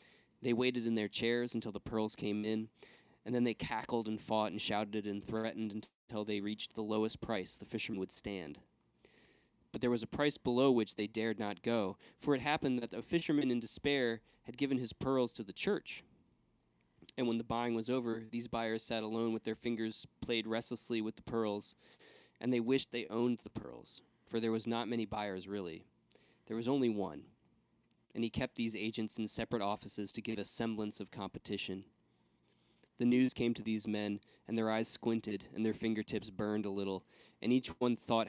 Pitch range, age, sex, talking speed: 105-120 Hz, 20-39, male, 195 wpm